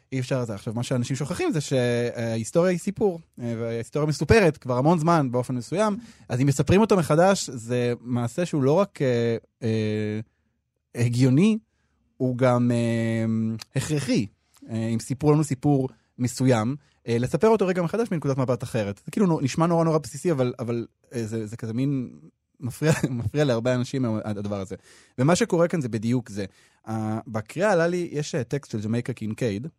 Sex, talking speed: male, 165 wpm